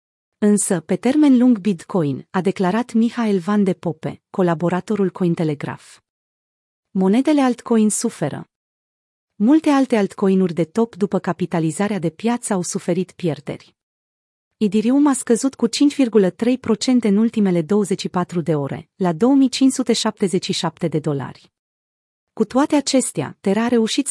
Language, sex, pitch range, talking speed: Romanian, female, 175-230 Hz, 120 wpm